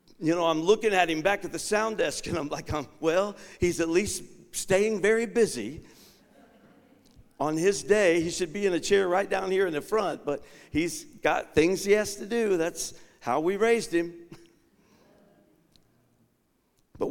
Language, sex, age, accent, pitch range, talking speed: English, male, 50-69, American, 120-175 Hz, 175 wpm